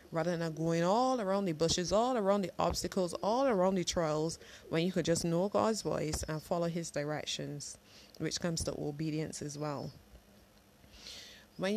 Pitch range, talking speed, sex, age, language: 135-180 Hz, 170 wpm, female, 20-39, English